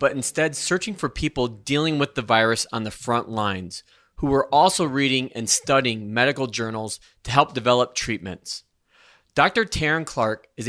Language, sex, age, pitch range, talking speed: English, male, 30-49, 120-145 Hz, 165 wpm